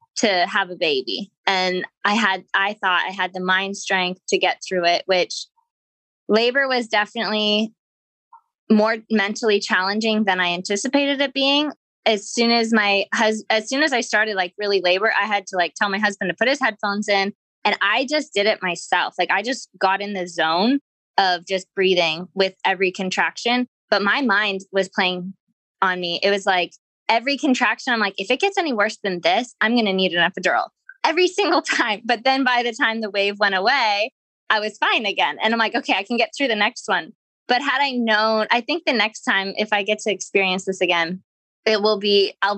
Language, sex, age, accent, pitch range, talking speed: English, female, 20-39, American, 195-245 Hz, 210 wpm